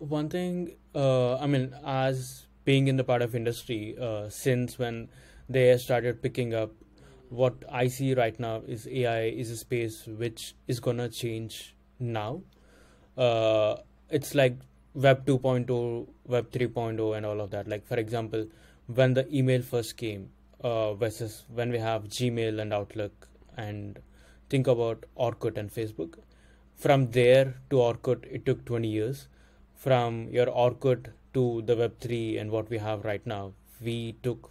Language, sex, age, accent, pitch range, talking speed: English, male, 20-39, Indian, 110-130 Hz, 155 wpm